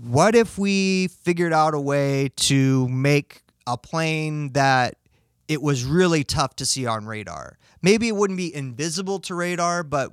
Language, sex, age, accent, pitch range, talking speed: English, male, 30-49, American, 125-155 Hz, 165 wpm